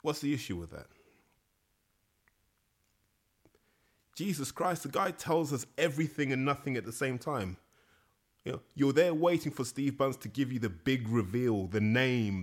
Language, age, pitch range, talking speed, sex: English, 20-39, 105-130 Hz, 165 wpm, male